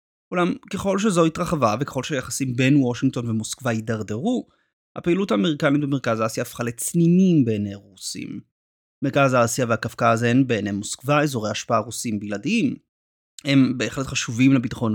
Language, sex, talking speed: Hebrew, male, 130 wpm